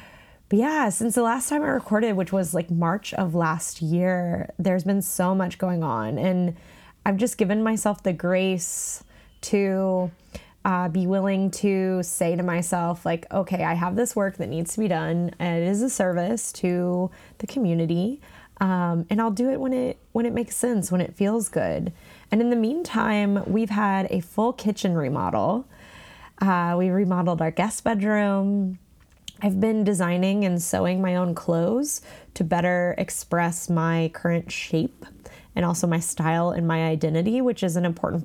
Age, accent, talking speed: 20-39, American, 175 wpm